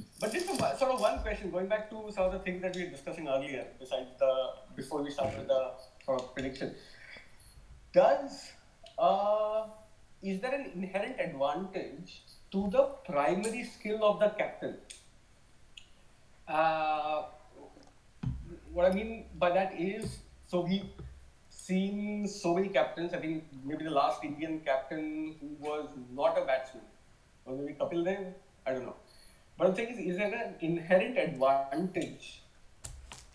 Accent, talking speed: native, 150 wpm